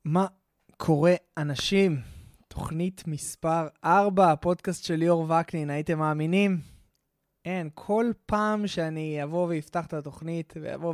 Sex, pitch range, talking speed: male, 150-195 Hz, 115 wpm